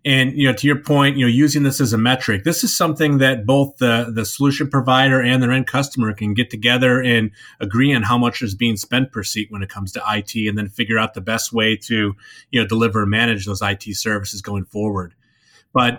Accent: American